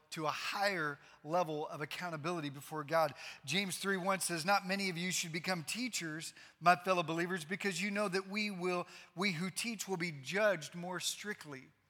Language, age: English, 40-59